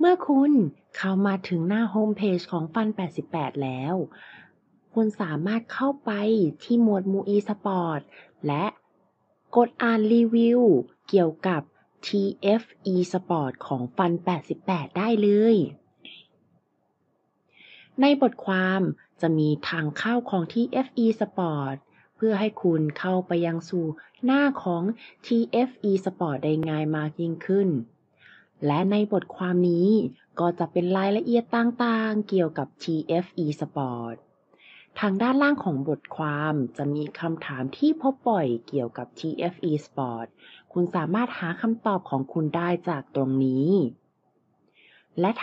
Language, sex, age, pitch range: Thai, female, 20-39, 160-220 Hz